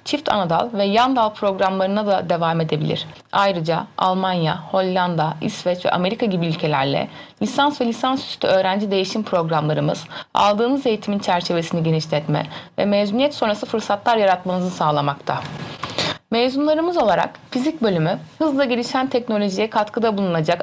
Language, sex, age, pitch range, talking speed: Turkish, female, 30-49, 170-225 Hz, 120 wpm